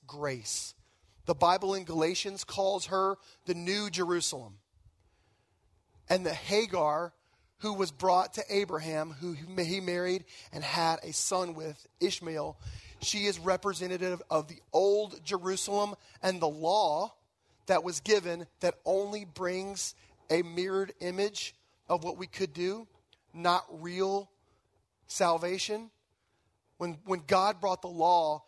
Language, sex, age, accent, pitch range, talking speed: English, male, 40-59, American, 135-190 Hz, 125 wpm